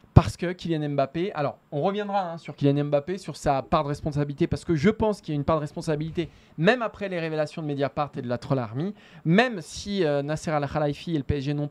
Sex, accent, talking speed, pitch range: male, French, 245 wpm, 145-195 Hz